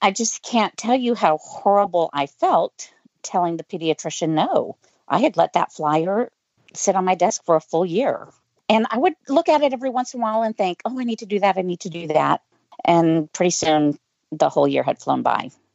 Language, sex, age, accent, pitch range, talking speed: English, female, 50-69, American, 155-220 Hz, 225 wpm